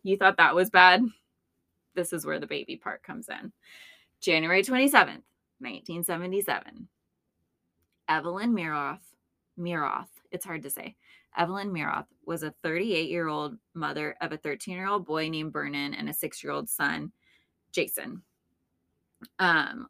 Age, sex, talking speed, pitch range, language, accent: 20-39, female, 140 wpm, 155-185 Hz, English, American